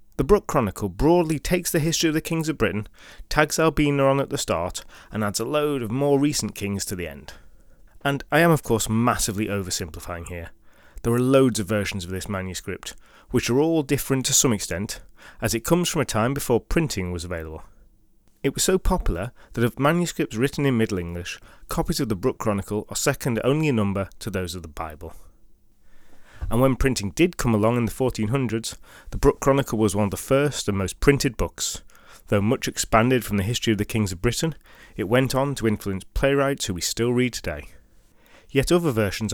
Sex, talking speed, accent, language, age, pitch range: male, 205 wpm, British, English, 30-49, 100-140 Hz